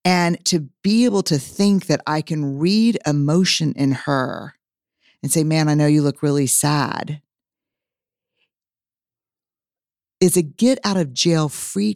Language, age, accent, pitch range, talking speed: English, 50-69, American, 145-185 Hz, 125 wpm